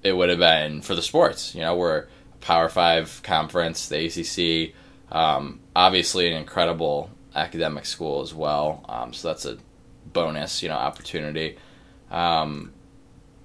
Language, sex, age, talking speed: English, male, 20-39, 145 wpm